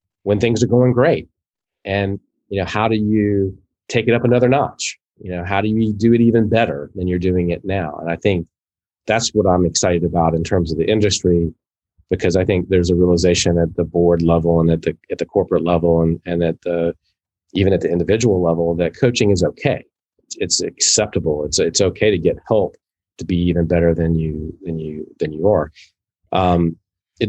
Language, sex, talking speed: English, male, 210 wpm